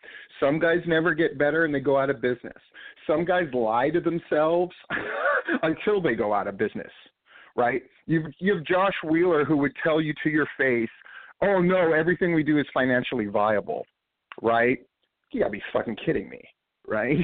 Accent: American